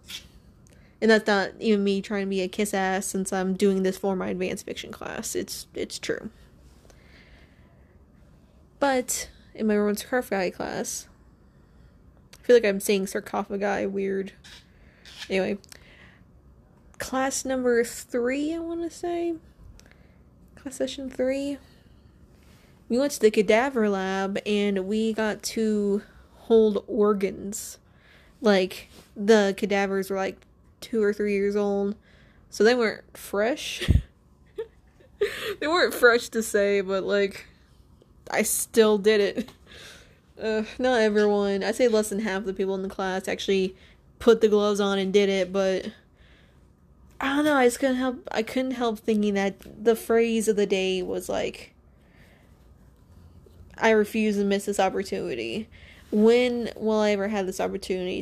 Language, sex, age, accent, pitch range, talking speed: English, female, 20-39, American, 190-225 Hz, 140 wpm